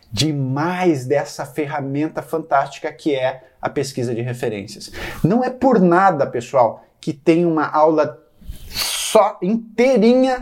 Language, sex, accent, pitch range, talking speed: Portuguese, male, Brazilian, 115-155 Hz, 120 wpm